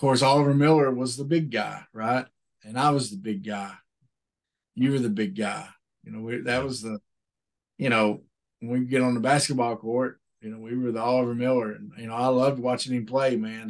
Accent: American